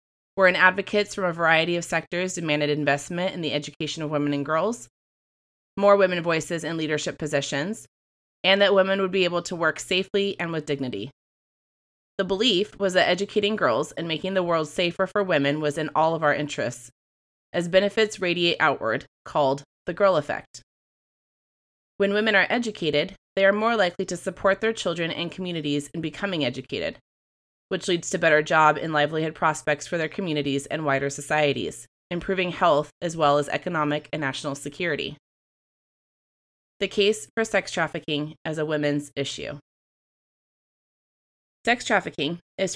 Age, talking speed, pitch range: 30-49, 160 wpm, 150-190 Hz